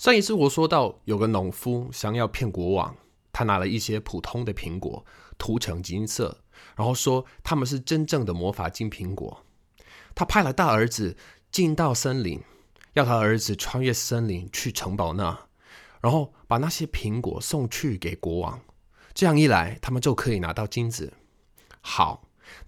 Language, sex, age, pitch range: Chinese, male, 20-39, 100-150 Hz